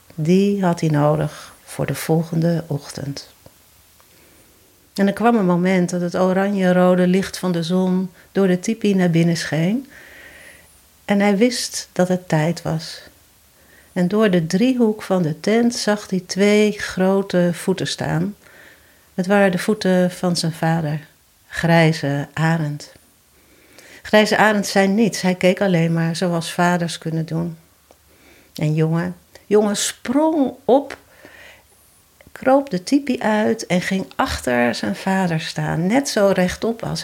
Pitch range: 160-200 Hz